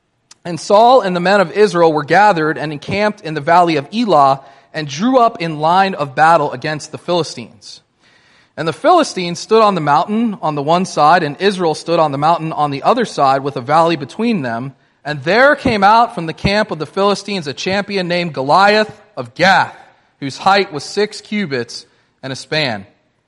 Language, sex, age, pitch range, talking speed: English, male, 30-49, 150-205 Hz, 195 wpm